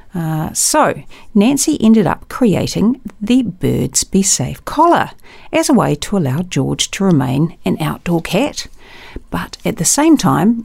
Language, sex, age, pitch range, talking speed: English, female, 40-59, 165-255 Hz, 150 wpm